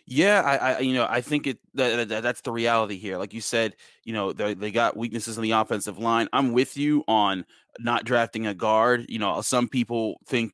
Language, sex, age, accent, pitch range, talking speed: English, male, 30-49, American, 105-120 Hz, 230 wpm